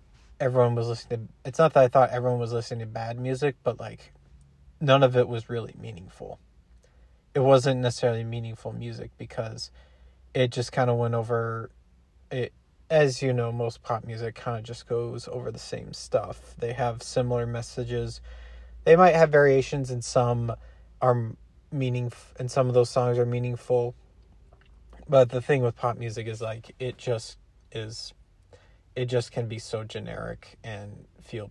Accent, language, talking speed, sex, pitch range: American, English, 165 wpm, male, 115-130 Hz